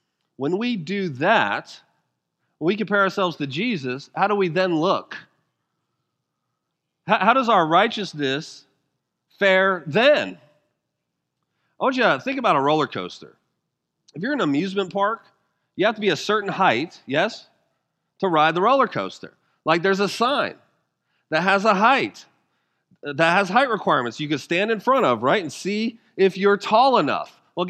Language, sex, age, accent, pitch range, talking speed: English, male, 30-49, American, 190-235 Hz, 165 wpm